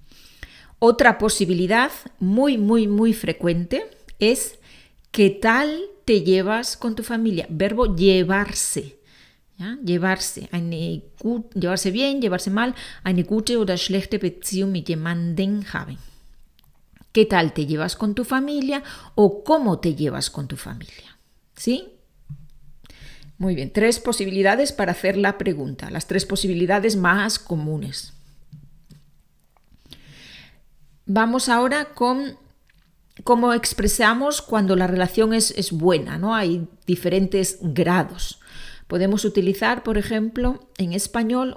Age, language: 40-59, Spanish